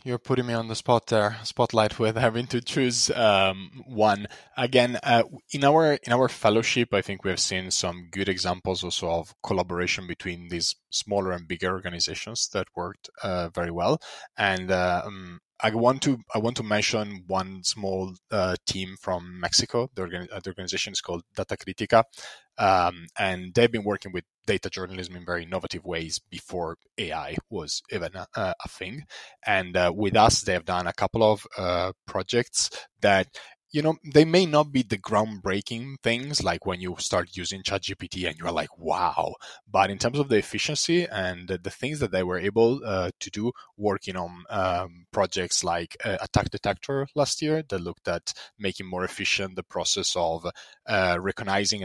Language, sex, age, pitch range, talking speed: English, male, 20-39, 90-120 Hz, 180 wpm